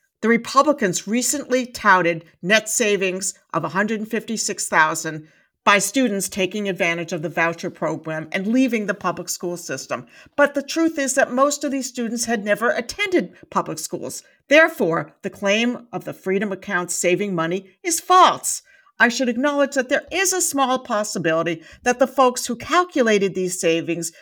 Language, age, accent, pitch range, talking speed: English, 50-69, American, 180-270 Hz, 155 wpm